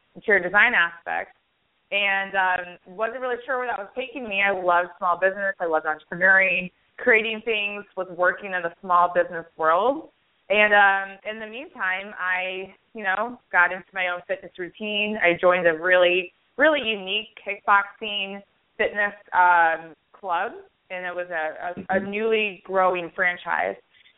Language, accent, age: English, American, 20-39